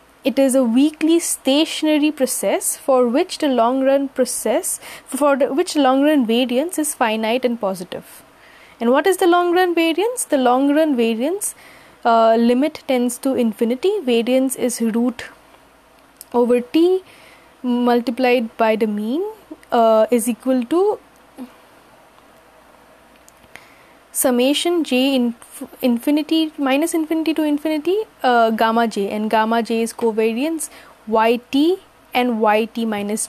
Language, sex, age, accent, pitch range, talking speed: English, female, 20-39, Indian, 235-310 Hz, 115 wpm